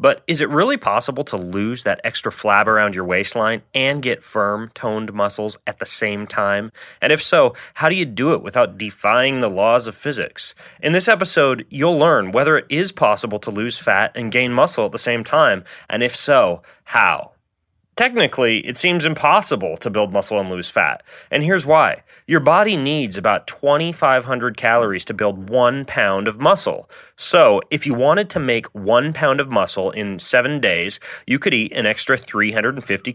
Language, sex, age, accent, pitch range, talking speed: English, male, 30-49, American, 100-135 Hz, 185 wpm